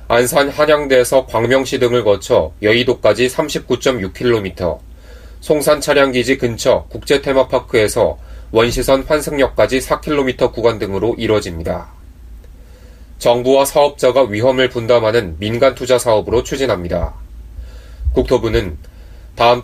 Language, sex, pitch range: Korean, male, 80-135 Hz